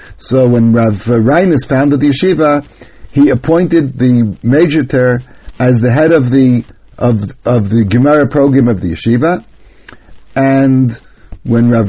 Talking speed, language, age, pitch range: 135 wpm, English, 60-79, 120-150 Hz